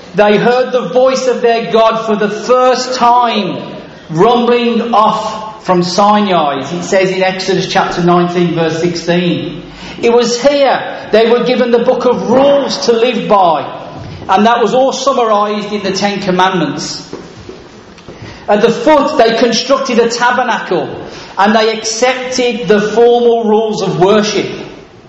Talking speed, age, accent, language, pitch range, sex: 145 wpm, 40-59, British, English, 195-245 Hz, male